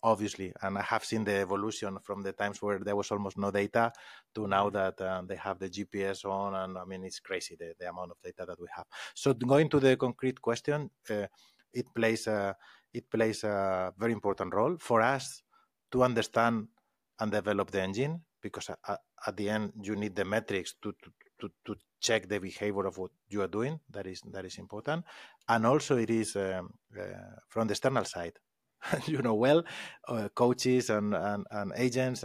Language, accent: English, Spanish